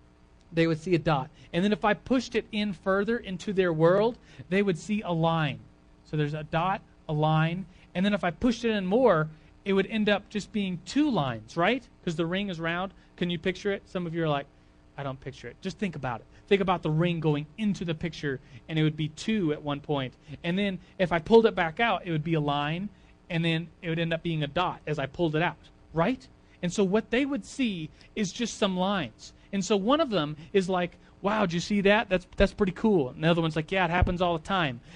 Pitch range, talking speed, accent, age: 155-205 Hz, 250 wpm, American, 30-49